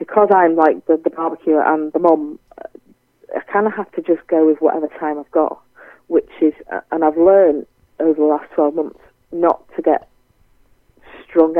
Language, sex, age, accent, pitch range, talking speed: English, female, 40-59, British, 150-170 Hz, 180 wpm